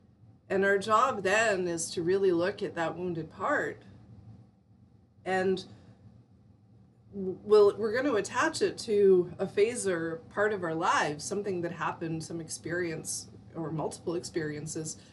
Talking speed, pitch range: 130 wpm, 160-225 Hz